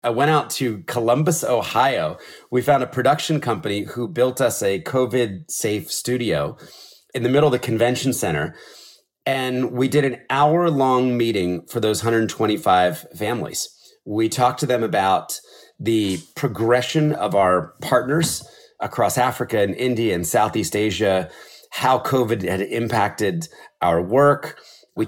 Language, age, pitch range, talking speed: English, 30-49, 110-135 Hz, 140 wpm